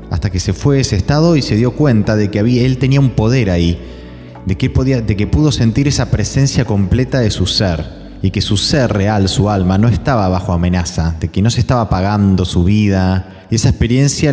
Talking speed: 215 wpm